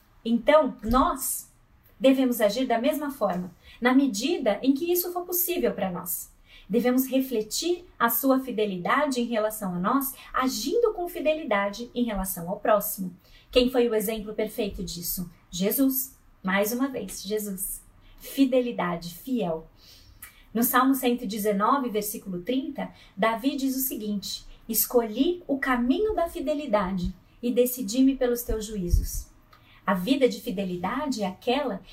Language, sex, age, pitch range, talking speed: Portuguese, female, 30-49, 200-265 Hz, 130 wpm